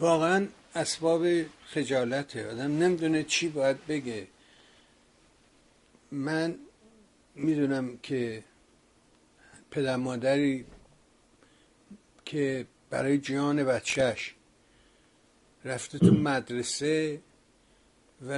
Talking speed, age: 70 wpm, 60-79